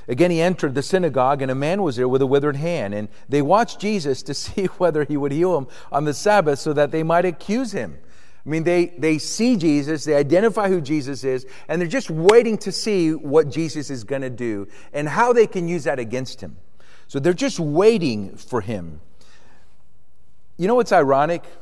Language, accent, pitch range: English, American, 125-185 Hz